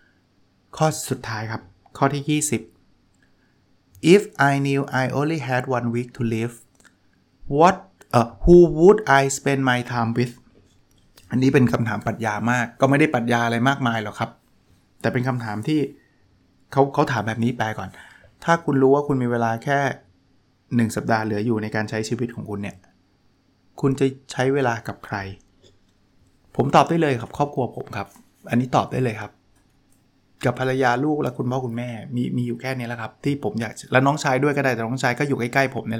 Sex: male